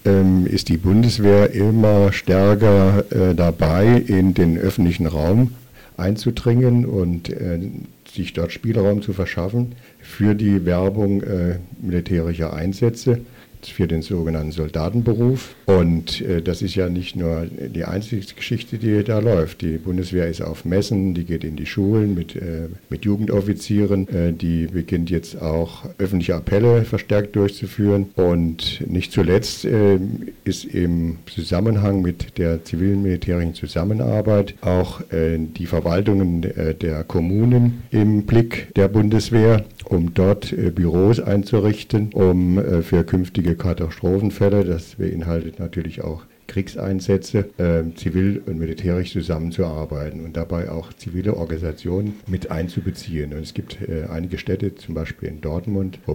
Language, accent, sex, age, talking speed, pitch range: German, German, male, 60-79, 130 wpm, 85-100 Hz